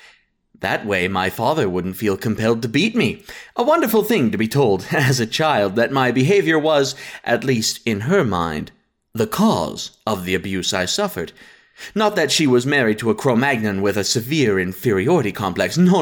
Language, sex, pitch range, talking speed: English, male, 105-165 Hz, 185 wpm